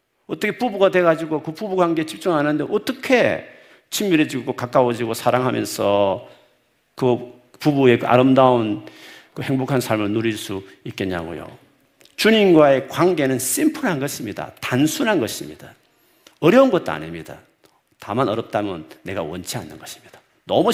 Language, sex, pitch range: Korean, male, 95-135 Hz